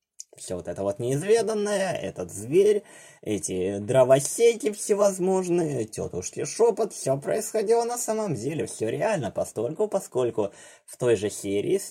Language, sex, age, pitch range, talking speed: Russian, male, 20-39, 115-190 Hz, 125 wpm